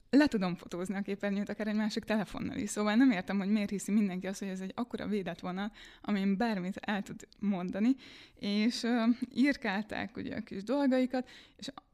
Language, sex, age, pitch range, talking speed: Hungarian, female, 20-39, 195-235 Hz, 185 wpm